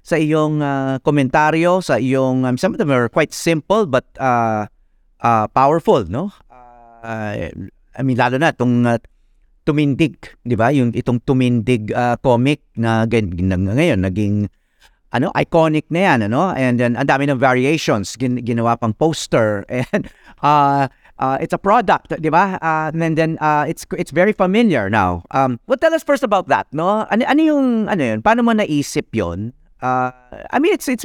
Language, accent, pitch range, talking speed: English, Filipino, 125-180 Hz, 175 wpm